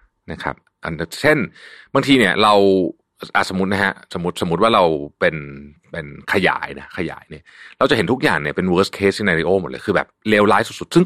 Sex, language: male, Thai